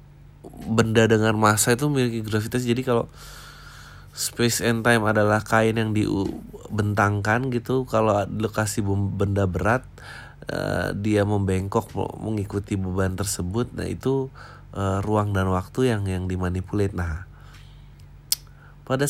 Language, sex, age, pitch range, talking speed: Indonesian, male, 20-39, 105-130 Hz, 110 wpm